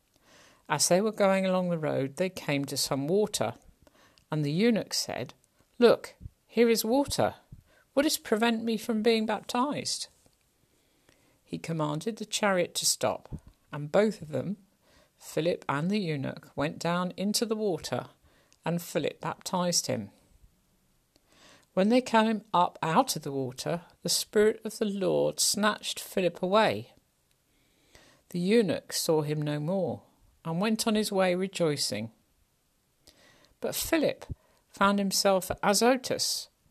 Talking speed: 135 wpm